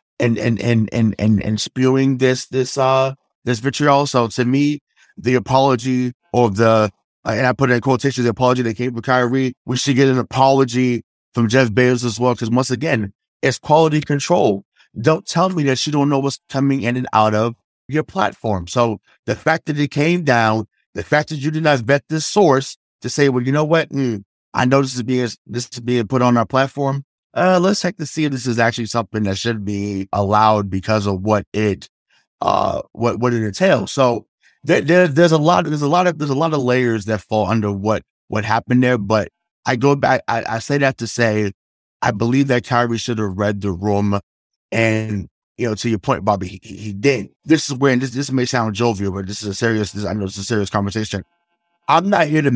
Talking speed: 220 wpm